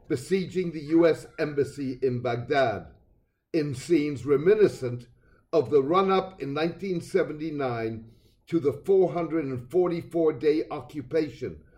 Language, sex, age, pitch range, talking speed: English, male, 60-79, 125-175 Hz, 90 wpm